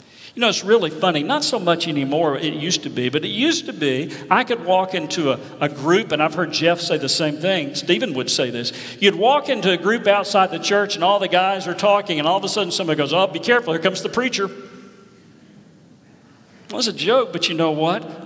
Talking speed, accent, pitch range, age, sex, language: 245 wpm, American, 165-235 Hz, 50-69, male, English